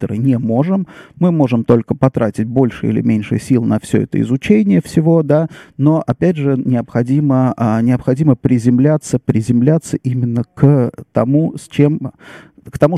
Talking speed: 140 wpm